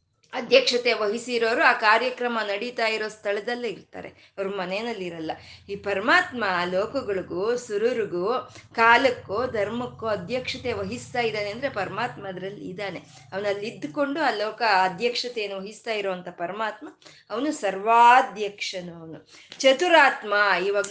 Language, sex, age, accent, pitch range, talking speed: Kannada, female, 20-39, native, 190-245 Hz, 95 wpm